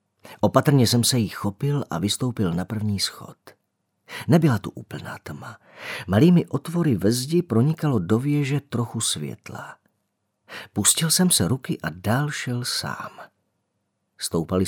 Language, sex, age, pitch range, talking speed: Czech, male, 40-59, 105-155 Hz, 130 wpm